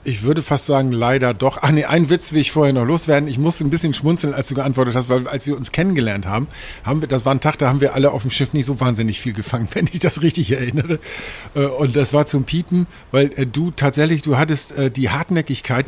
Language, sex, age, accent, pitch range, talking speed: German, male, 50-69, German, 125-145 Hz, 245 wpm